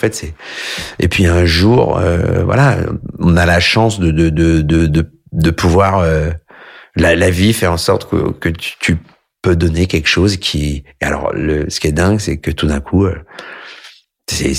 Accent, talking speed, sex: French, 205 wpm, male